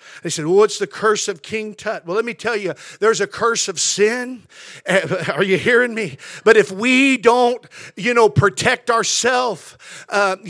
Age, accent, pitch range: 50-69, American, 225-275 Hz